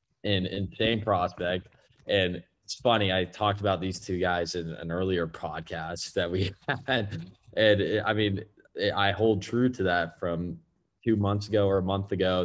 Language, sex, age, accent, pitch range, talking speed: English, male, 10-29, American, 85-100 Hz, 180 wpm